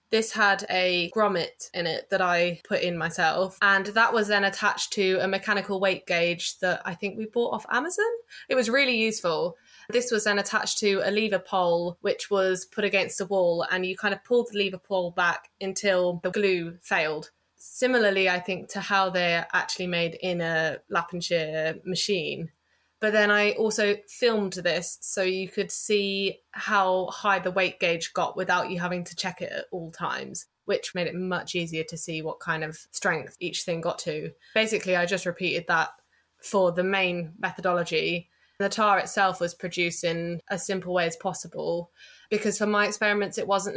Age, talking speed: 20-39, 190 wpm